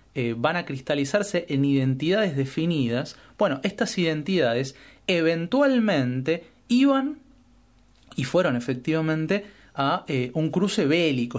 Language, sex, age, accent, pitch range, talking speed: Spanish, male, 30-49, Argentinian, 125-170 Hz, 105 wpm